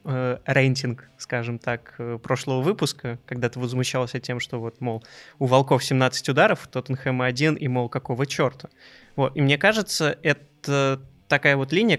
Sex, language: male, Russian